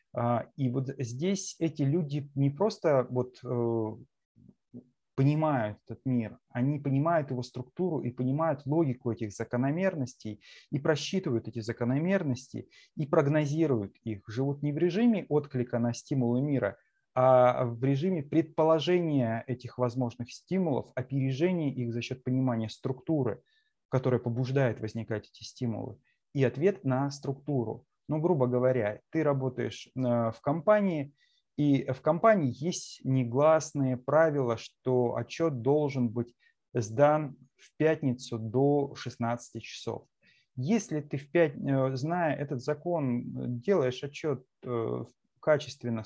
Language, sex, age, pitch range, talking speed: Russian, male, 20-39, 120-150 Hz, 115 wpm